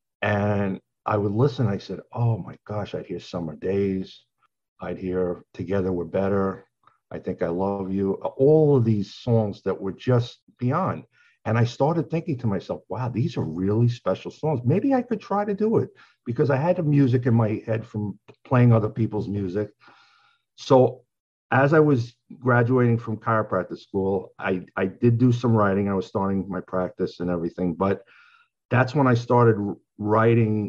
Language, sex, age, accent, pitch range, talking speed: English, male, 50-69, American, 95-120 Hz, 175 wpm